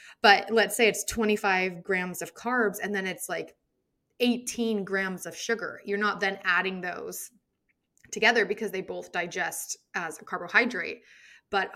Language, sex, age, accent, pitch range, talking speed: English, female, 20-39, American, 185-225 Hz, 155 wpm